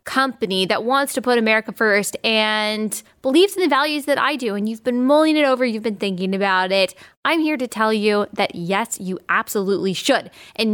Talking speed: 205 wpm